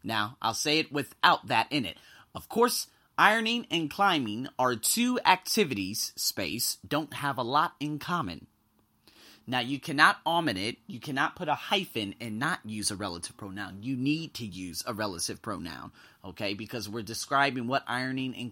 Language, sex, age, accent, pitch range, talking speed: English, male, 30-49, American, 115-190 Hz, 170 wpm